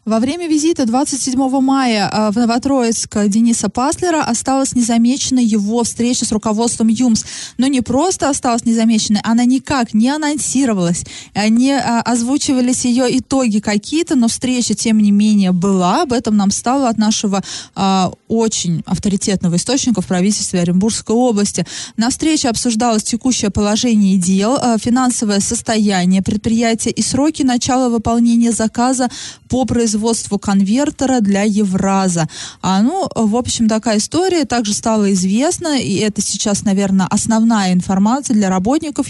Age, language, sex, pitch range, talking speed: 20-39, Russian, female, 200-250 Hz, 130 wpm